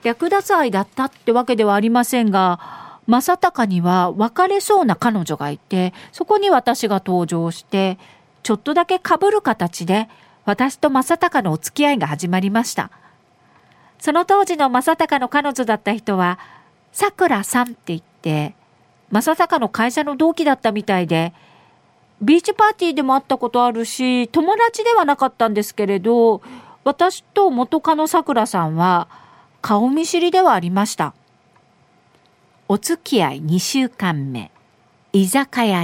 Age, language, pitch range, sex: 40-59, Japanese, 190-290 Hz, female